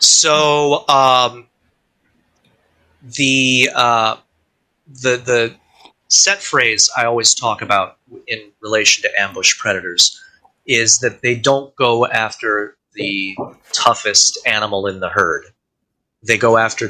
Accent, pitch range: American, 110-135 Hz